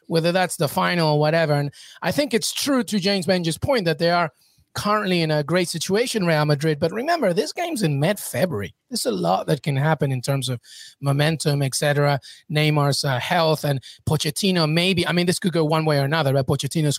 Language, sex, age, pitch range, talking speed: English, male, 30-49, 150-180 Hz, 210 wpm